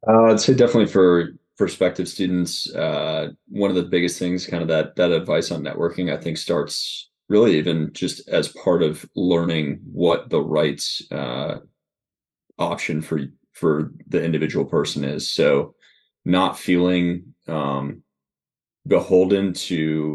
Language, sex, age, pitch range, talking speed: English, male, 20-39, 80-90 Hz, 140 wpm